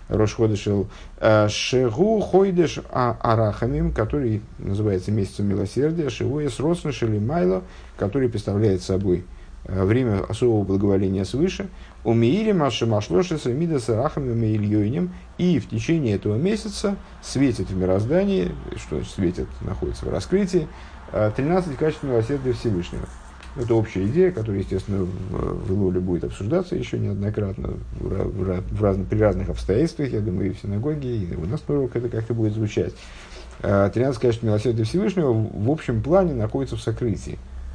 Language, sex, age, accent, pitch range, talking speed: Russian, male, 50-69, native, 95-125 Hz, 130 wpm